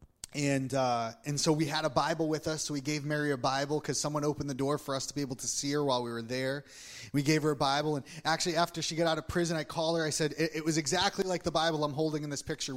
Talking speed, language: 295 wpm, English